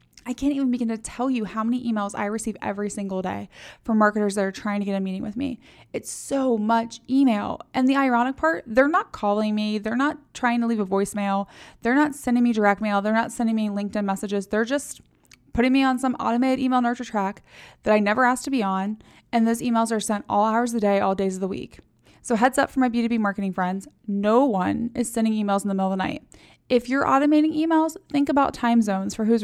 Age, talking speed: 20-39, 240 wpm